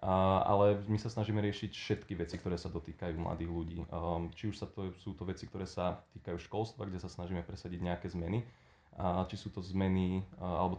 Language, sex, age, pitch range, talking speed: Slovak, male, 20-39, 90-100 Hz, 190 wpm